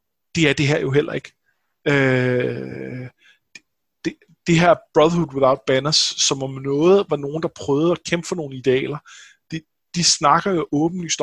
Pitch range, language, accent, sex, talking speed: 140-175 Hz, Danish, native, male, 170 wpm